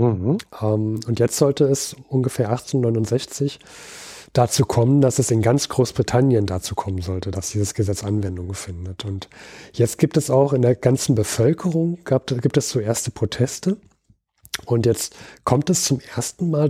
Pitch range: 115-135 Hz